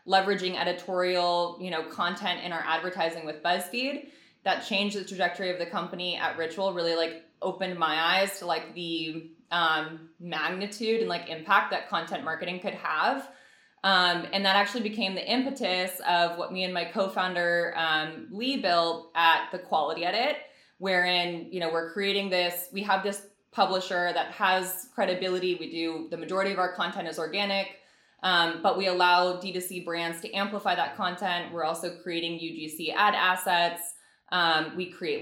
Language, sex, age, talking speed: English, female, 20-39, 165 wpm